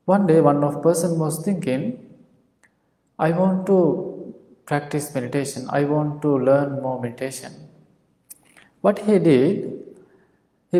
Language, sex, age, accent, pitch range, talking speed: English, male, 20-39, Indian, 135-170 Hz, 120 wpm